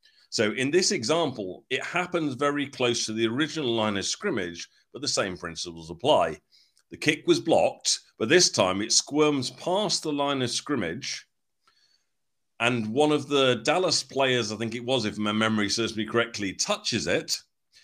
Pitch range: 105-145 Hz